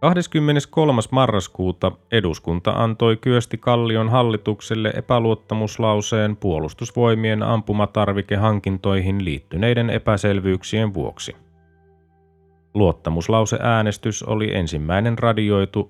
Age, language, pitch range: 30-49, Finnish, 90-115 Hz